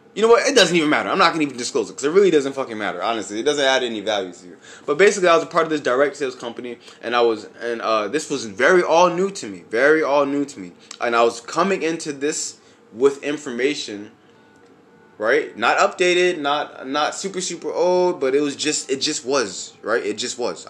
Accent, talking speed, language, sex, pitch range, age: American, 240 wpm, English, male, 120-170 Hz, 20-39